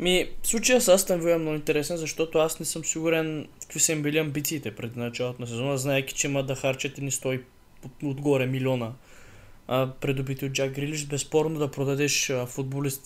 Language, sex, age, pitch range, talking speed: Bulgarian, male, 20-39, 140-180 Hz, 190 wpm